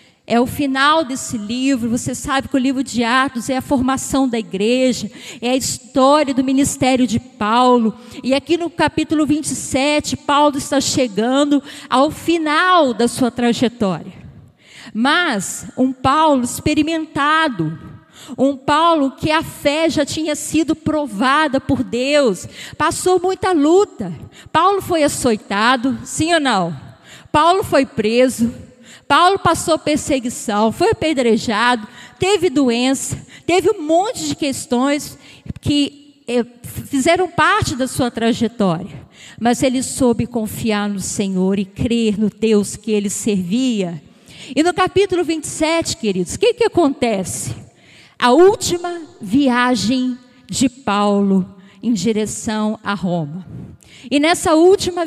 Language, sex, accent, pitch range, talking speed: Portuguese, female, Brazilian, 230-305 Hz, 125 wpm